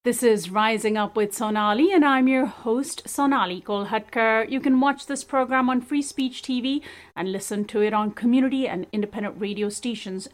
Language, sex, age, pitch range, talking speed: English, female, 30-49, 210-275 Hz, 180 wpm